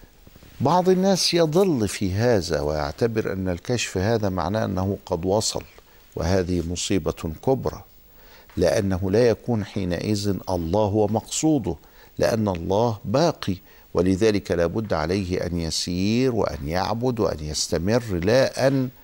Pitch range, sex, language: 90-125 Hz, male, Arabic